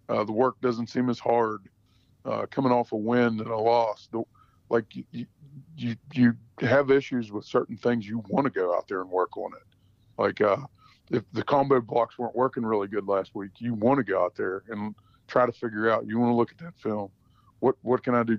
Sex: male